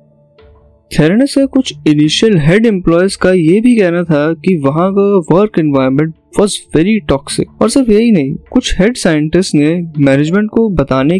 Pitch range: 140-195 Hz